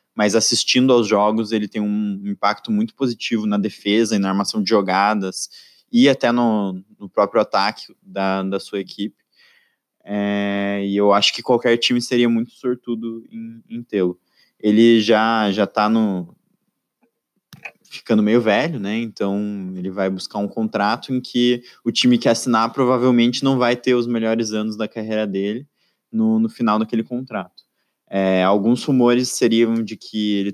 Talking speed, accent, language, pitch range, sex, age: 160 wpm, Brazilian, Portuguese, 100-120 Hz, male, 20-39